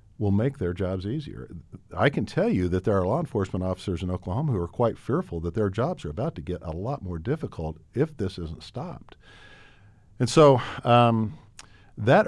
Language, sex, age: English, male, 50-69